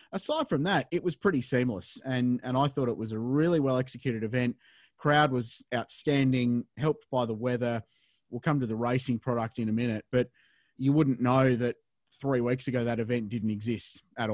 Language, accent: English, Australian